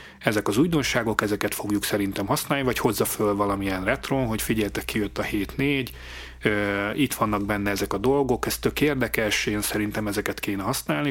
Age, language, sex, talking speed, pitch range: 30-49, Hungarian, male, 180 wpm, 105-125 Hz